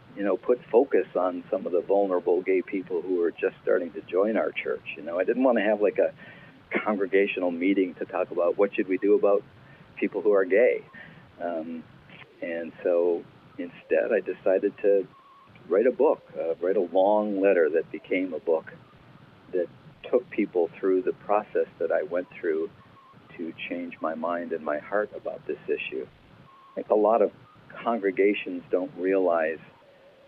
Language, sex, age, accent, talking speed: English, male, 50-69, American, 175 wpm